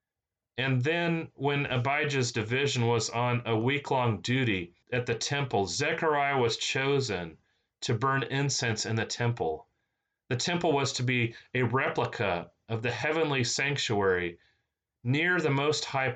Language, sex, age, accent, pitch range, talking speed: English, male, 30-49, American, 115-155 Hz, 135 wpm